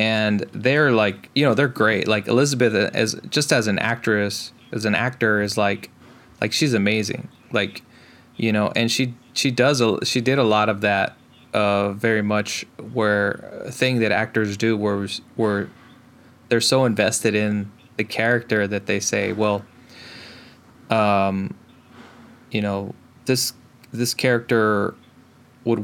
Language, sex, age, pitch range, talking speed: English, male, 20-39, 105-125 Hz, 145 wpm